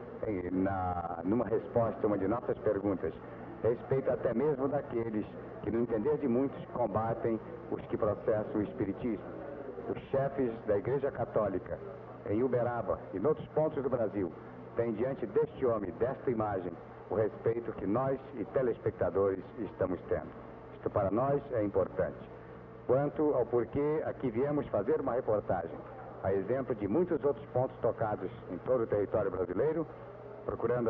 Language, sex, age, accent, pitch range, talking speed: Portuguese, male, 60-79, Brazilian, 105-140 Hz, 145 wpm